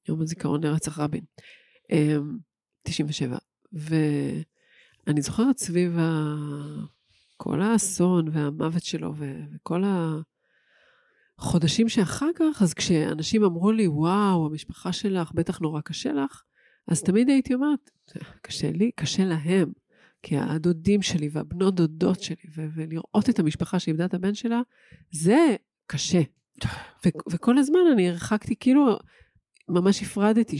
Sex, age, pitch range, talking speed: female, 40-59, 165-220 Hz, 120 wpm